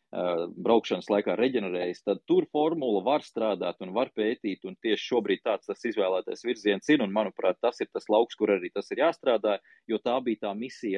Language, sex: English, male